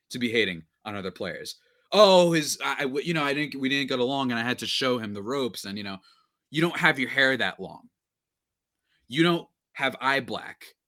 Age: 30-49